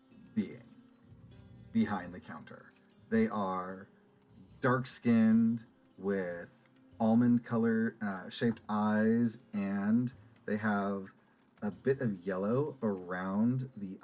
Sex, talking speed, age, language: male, 95 wpm, 40-59, English